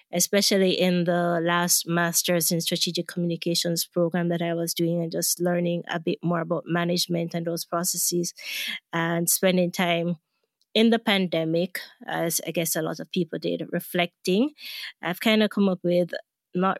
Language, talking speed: English, 165 wpm